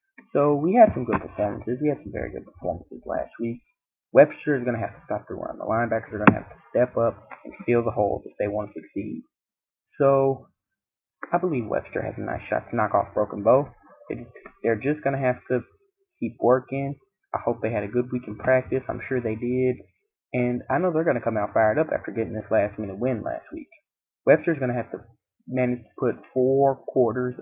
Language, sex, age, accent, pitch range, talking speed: English, male, 20-39, American, 115-140 Hz, 230 wpm